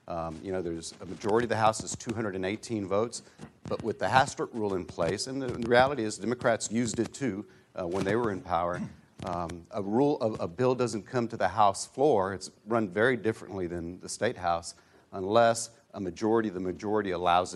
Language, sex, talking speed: English, male, 210 wpm